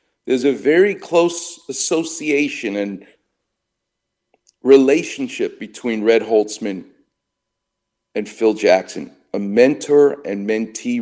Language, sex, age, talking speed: English, male, 50-69, 95 wpm